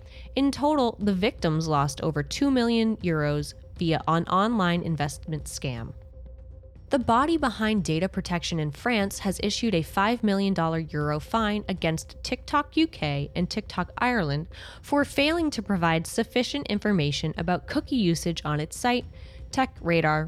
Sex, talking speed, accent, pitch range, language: female, 140 wpm, American, 150-220 Hz, English